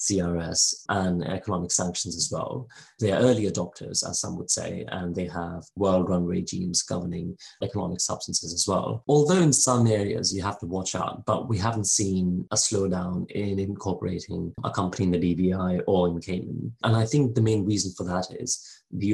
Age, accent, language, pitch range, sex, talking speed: 30-49, British, English, 90-105 Hz, male, 185 wpm